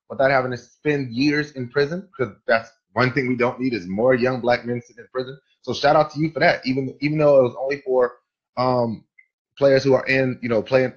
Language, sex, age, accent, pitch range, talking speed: English, male, 30-49, American, 120-175 Hz, 240 wpm